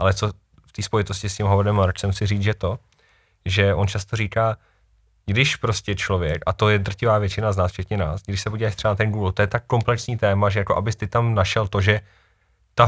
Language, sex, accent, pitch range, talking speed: Czech, male, native, 95-110 Hz, 230 wpm